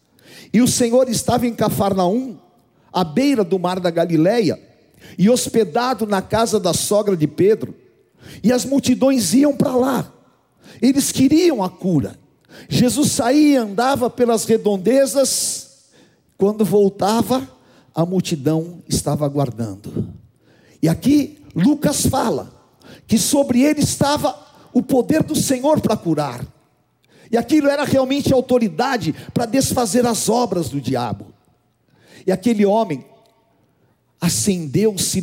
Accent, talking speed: Brazilian, 120 wpm